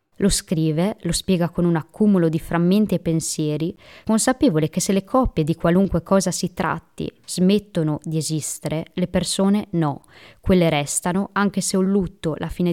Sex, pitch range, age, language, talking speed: female, 165-215 Hz, 20-39, Italian, 165 wpm